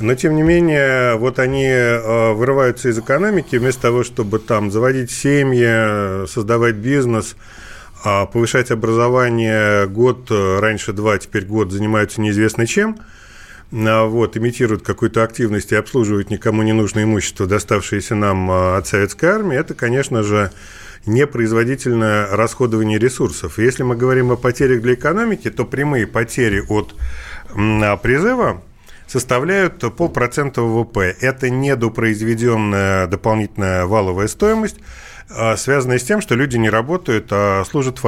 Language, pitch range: Russian, 105-130 Hz